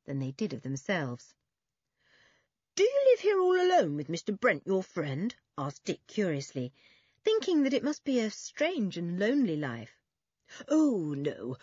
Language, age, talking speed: English, 50-69, 160 wpm